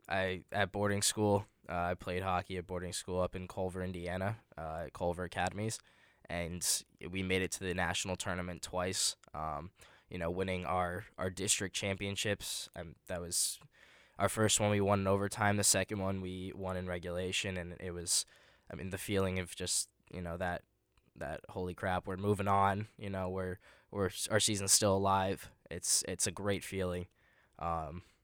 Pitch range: 90-95 Hz